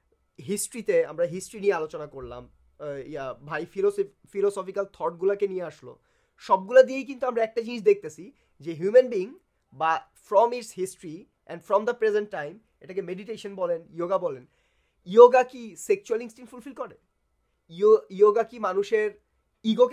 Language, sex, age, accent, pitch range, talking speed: English, male, 30-49, Indian, 190-280 Hz, 130 wpm